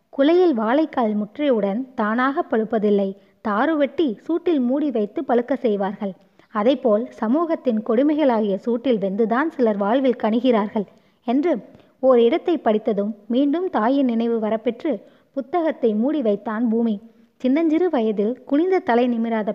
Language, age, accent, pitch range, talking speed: Tamil, 20-39, native, 220-290 Hz, 115 wpm